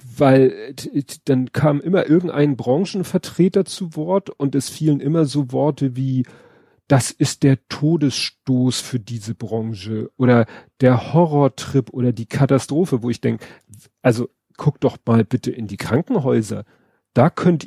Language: German